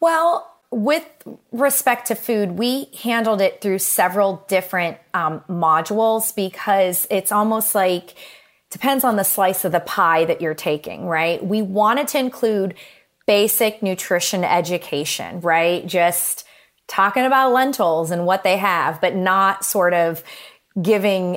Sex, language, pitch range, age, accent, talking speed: female, English, 170-220 Hz, 30-49, American, 140 wpm